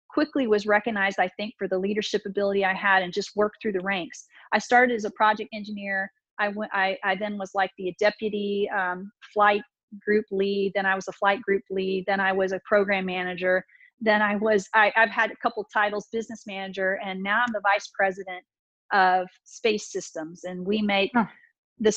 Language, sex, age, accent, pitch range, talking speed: English, female, 40-59, American, 195-220 Hz, 200 wpm